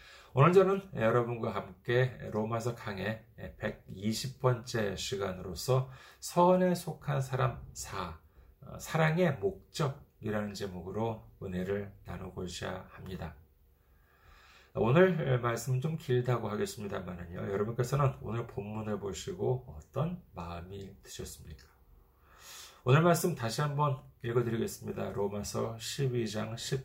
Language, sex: Korean, male